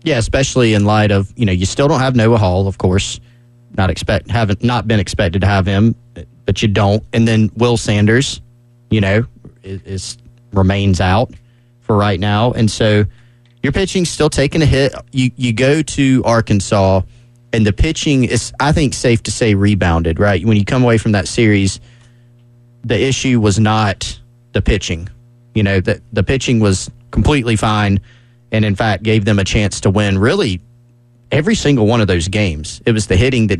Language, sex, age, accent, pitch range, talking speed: English, male, 30-49, American, 105-120 Hz, 190 wpm